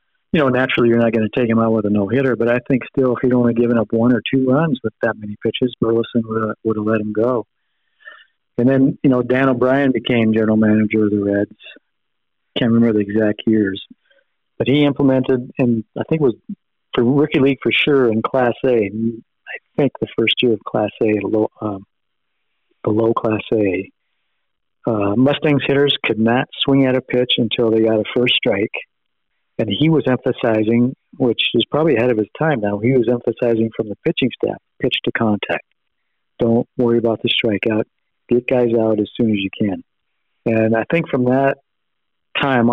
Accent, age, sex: American, 50-69, male